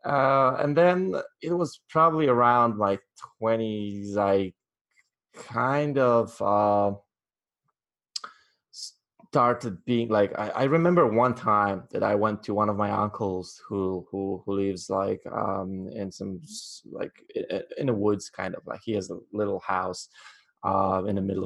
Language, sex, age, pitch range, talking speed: English, male, 20-39, 95-125 Hz, 150 wpm